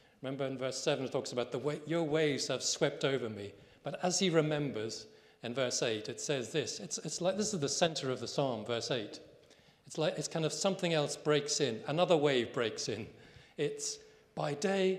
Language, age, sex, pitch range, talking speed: English, 40-59, male, 130-160 Hz, 210 wpm